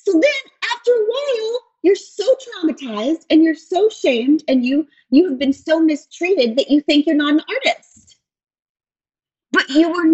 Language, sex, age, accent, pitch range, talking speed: English, female, 30-49, American, 195-305 Hz, 170 wpm